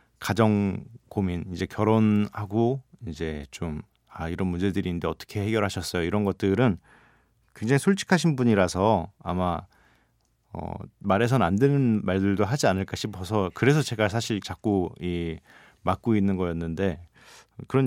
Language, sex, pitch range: Korean, male, 95-125 Hz